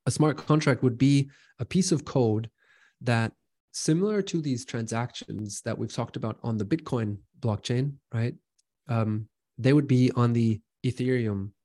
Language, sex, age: English, male, 20-39